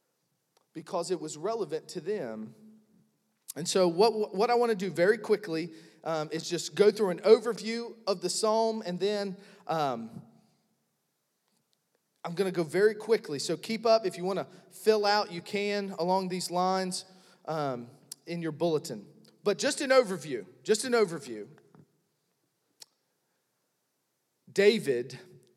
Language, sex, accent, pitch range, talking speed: English, male, American, 170-220 Hz, 145 wpm